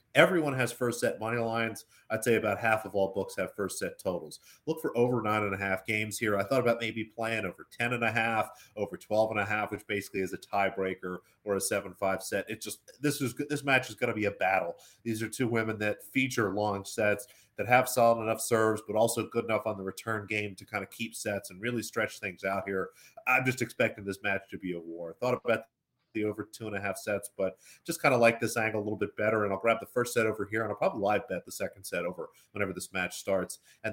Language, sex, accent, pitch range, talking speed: English, male, American, 105-130 Hz, 260 wpm